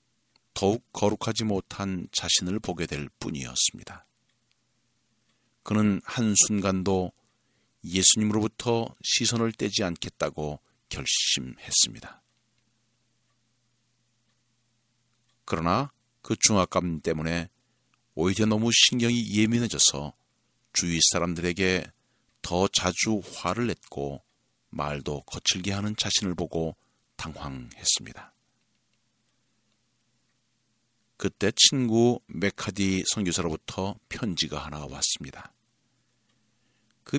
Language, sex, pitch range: Korean, male, 90-120 Hz